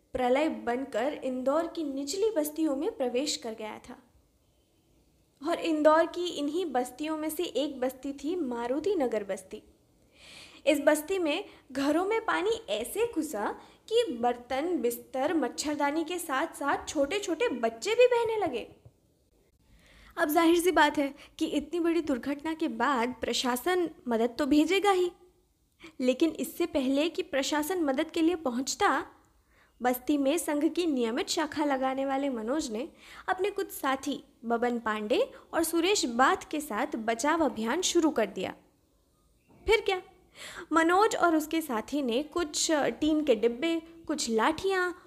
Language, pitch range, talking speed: Hindi, 265-360 Hz, 130 wpm